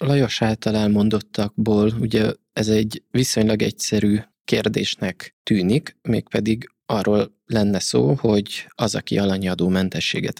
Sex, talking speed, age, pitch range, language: male, 110 wpm, 20-39, 100-115 Hz, Hungarian